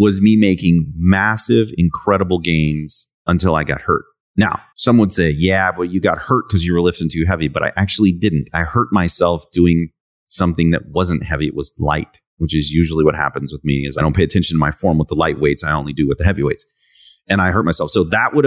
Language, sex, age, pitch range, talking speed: English, male, 30-49, 90-130 Hz, 235 wpm